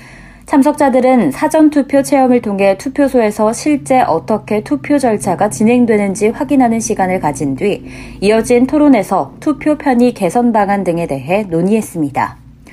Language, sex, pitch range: Korean, female, 185-250 Hz